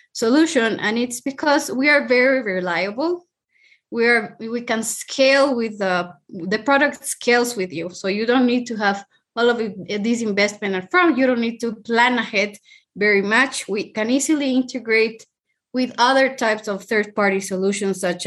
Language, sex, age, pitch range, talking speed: English, female, 20-39, 195-240 Hz, 175 wpm